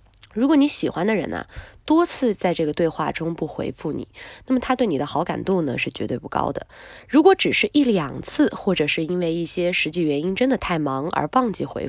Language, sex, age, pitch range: Chinese, female, 20-39, 155-245 Hz